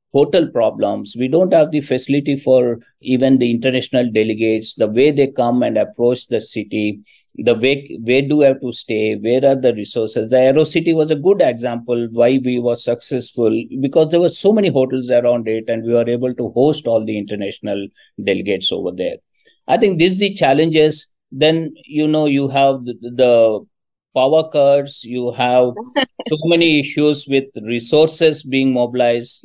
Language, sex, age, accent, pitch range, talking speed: Hindi, male, 50-69, native, 120-155 Hz, 175 wpm